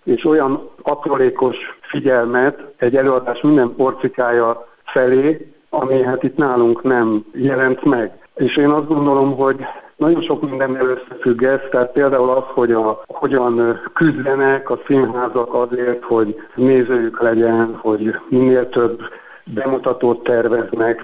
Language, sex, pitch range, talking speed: Hungarian, male, 120-140 Hz, 125 wpm